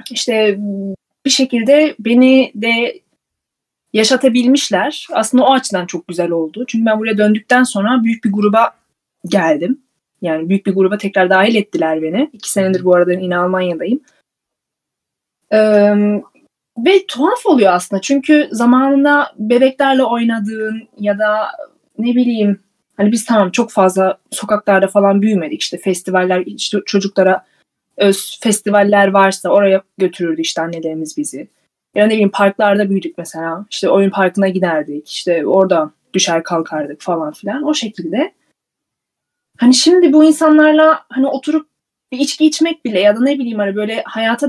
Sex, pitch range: female, 190-265 Hz